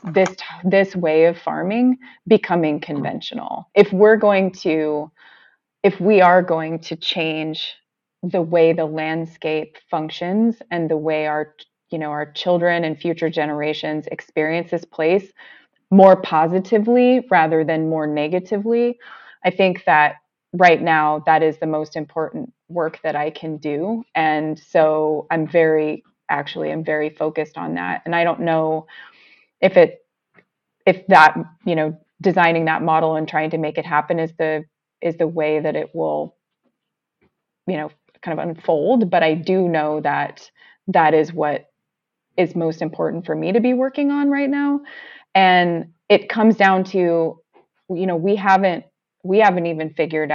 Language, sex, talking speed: English, female, 155 wpm